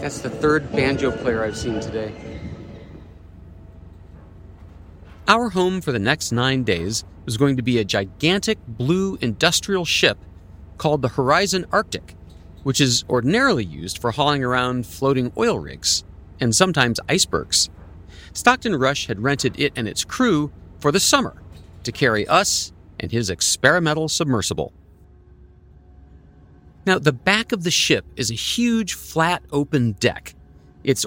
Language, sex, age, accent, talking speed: English, male, 40-59, American, 140 wpm